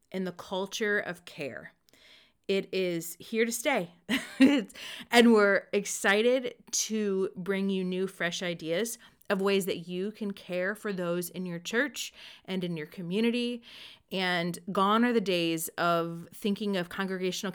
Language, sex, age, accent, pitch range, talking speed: English, female, 30-49, American, 185-235 Hz, 145 wpm